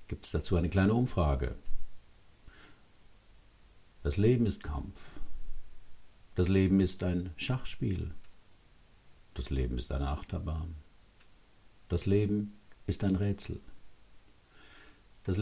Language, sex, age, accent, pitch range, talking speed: German, male, 60-79, German, 80-100 Hz, 100 wpm